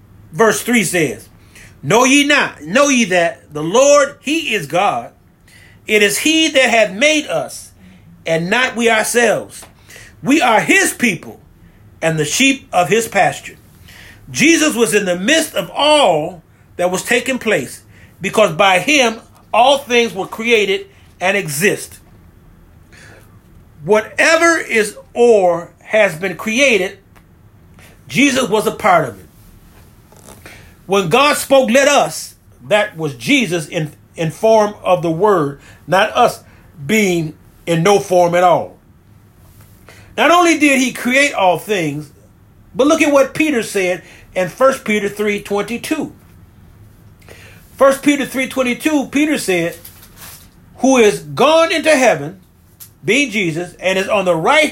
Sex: male